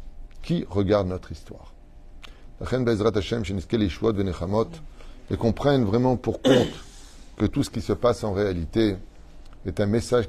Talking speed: 120 wpm